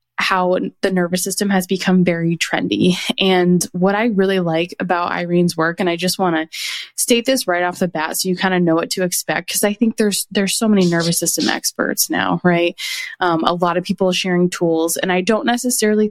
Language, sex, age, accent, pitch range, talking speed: English, female, 20-39, American, 175-205 Hz, 215 wpm